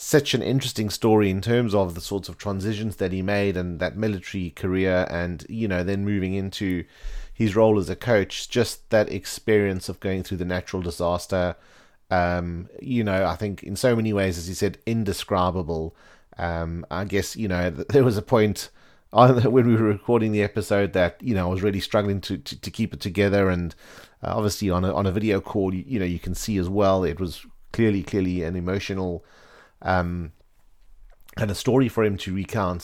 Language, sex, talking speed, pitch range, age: English, male, 200 wpm, 90-105 Hz, 30-49